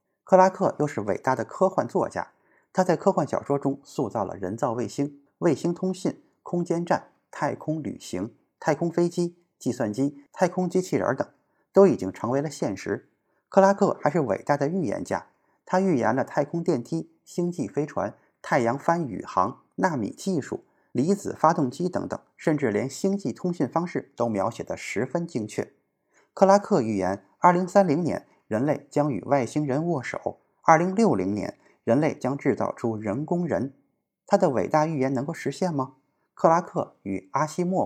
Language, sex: Chinese, male